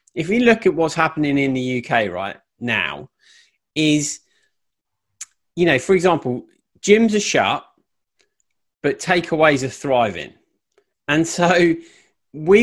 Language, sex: English, male